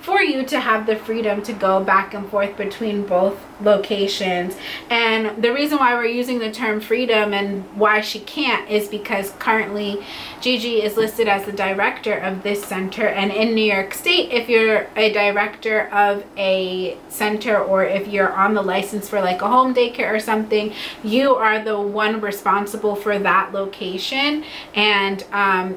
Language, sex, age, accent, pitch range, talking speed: English, female, 20-39, American, 200-225 Hz, 170 wpm